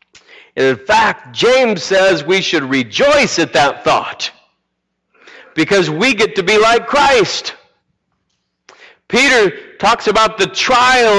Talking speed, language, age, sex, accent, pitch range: 120 wpm, English, 50-69, male, American, 155-245 Hz